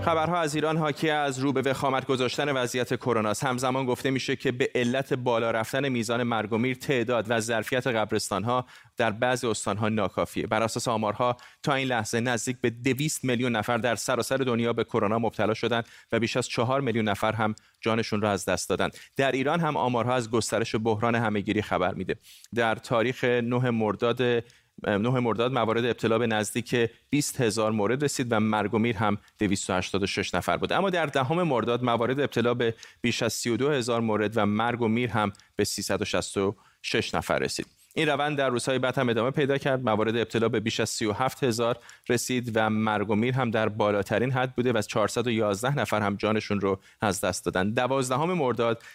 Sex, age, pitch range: male, 30-49, 110-130 Hz